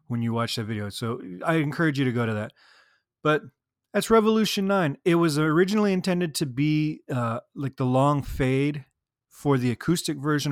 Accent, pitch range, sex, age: American, 115-145 Hz, male, 30-49